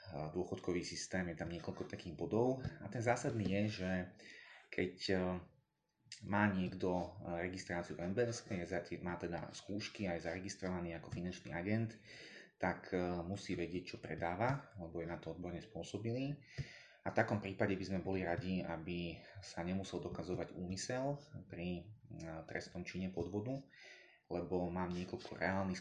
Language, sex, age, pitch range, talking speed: Slovak, male, 30-49, 90-100 Hz, 135 wpm